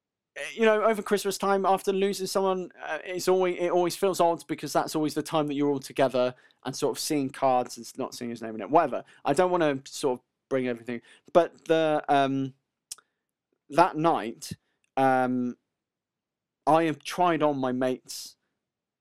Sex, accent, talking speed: male, British, 180 wpm